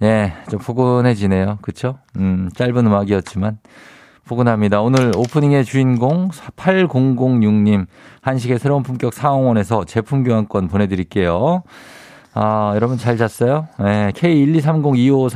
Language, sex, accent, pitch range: Korean, male, native, 95-130 Hz